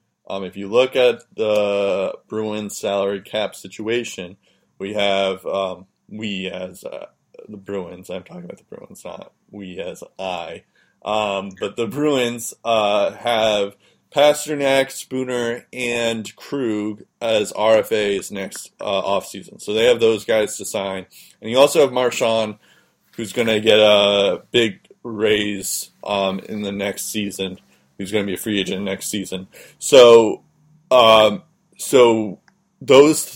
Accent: American